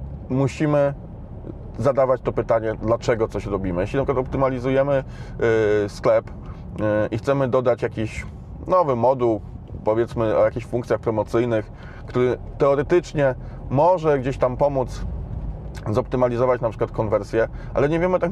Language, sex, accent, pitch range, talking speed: Polish, male, native, 115-150 Hz, 130 wpm